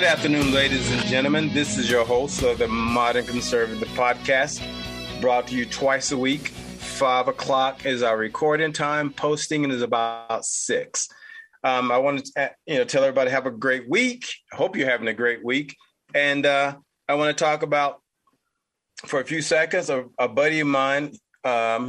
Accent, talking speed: American, 180 wpm